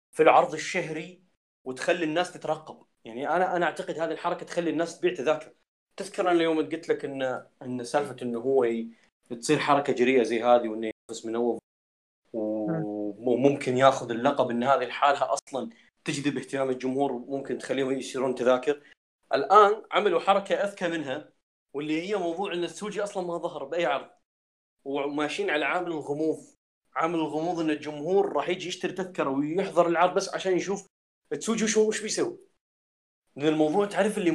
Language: Arabic